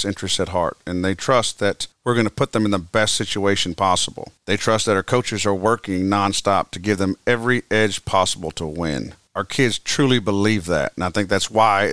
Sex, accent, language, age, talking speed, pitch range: male, American, English, 40-59, 215 wpm, 95-110 Hz